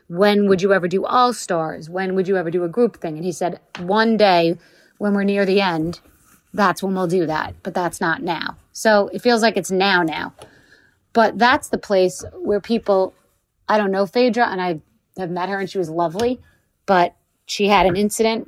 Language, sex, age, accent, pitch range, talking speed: English, female, 30-49, American, 170-205 Hz, 210 wpm